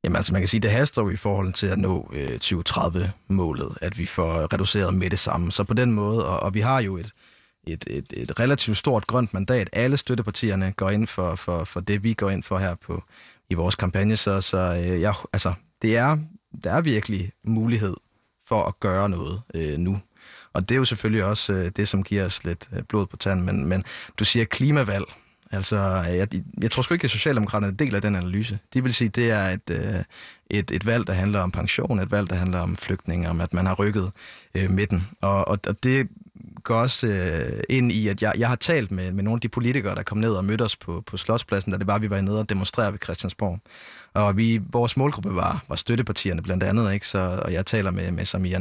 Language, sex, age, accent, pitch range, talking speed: Danish, male, 30-49, native, 95-115 Hz, 235 wpm